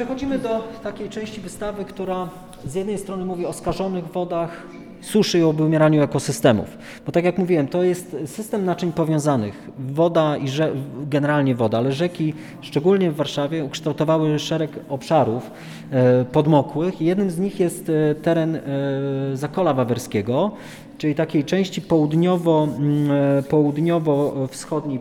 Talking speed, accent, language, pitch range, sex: 120 wpm, native, Polish, 145-175 Hz, male